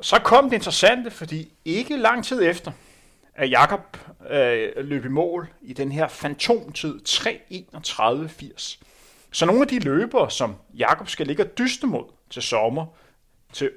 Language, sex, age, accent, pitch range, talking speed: Danish, male, 30-49, native, 150-215 Hz, 155 wpm